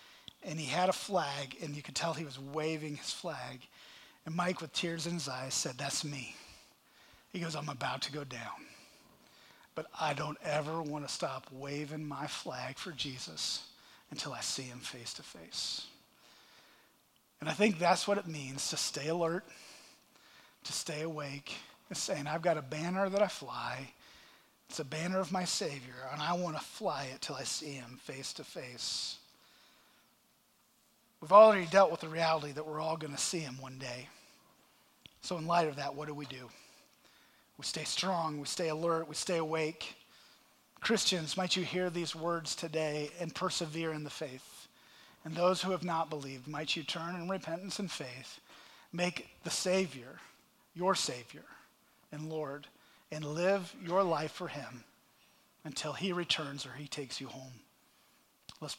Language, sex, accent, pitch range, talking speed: English, male, American, 140-170 Hz, 175 wpm